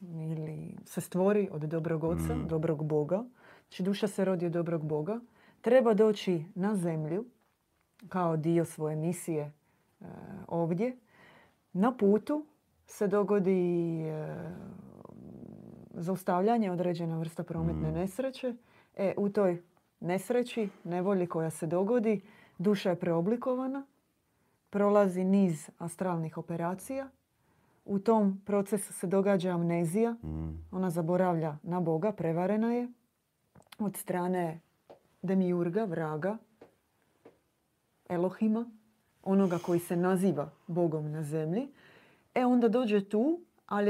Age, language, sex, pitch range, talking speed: 30-49, Croatian, female, 170-220 Hz, 105 wpm